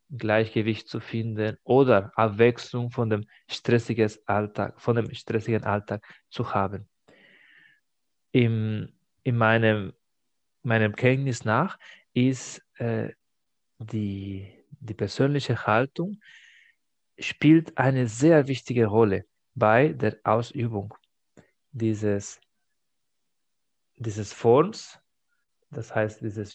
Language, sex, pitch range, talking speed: German, male, 110-130 Hz, 95 wpm